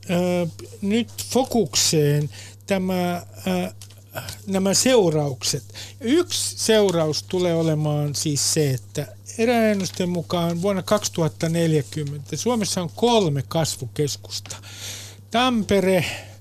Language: Finnish